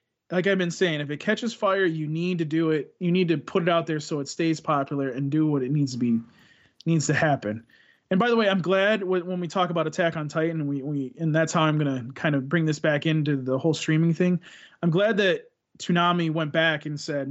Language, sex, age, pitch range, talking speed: English, male, 30-49, 140-175 Hz, 255 wpm